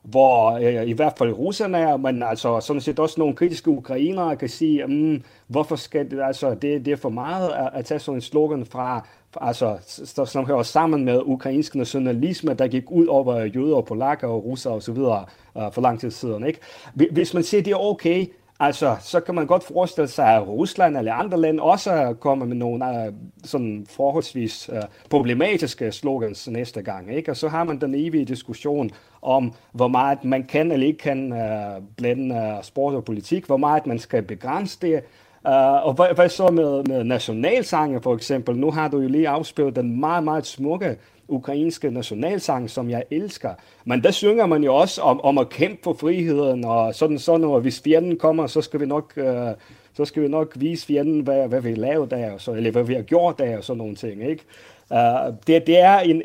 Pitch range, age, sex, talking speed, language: 120-155 Hz, 40-59, male, 190 wpm, Danish